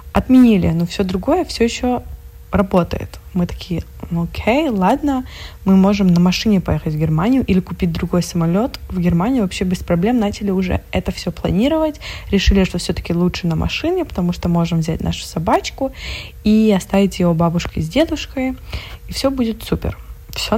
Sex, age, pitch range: female, 20-39, 170-220 Hz